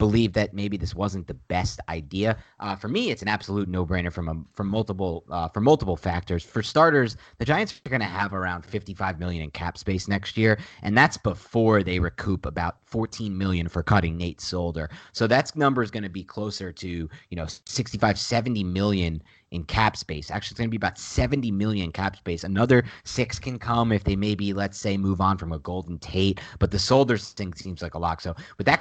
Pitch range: 90-115 Hz